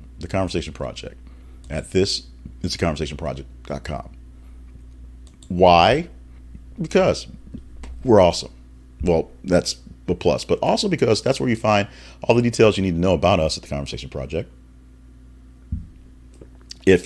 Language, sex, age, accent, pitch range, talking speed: English, male, 40-59, American, 70-95 Hz, 125 wpm